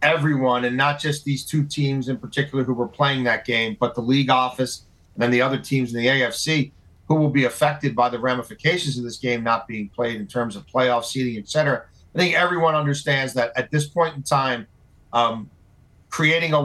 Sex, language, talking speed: male, English, 210 wpm